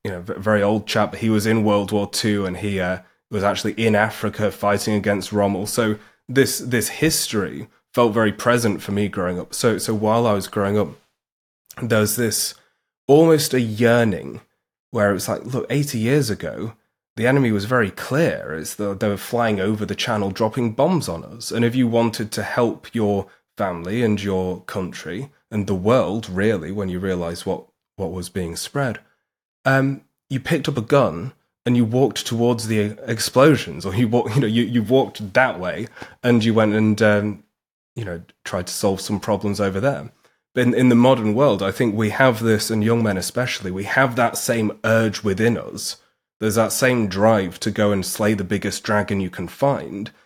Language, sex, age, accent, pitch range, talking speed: English, male, 20-39, British, 100-120 Hz, 200 wpm